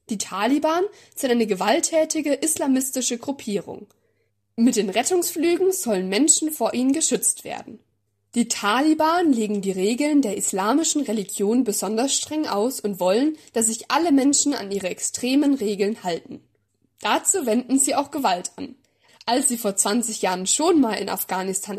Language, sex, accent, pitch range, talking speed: German, female, German, 210-295 Hz, 145 wpm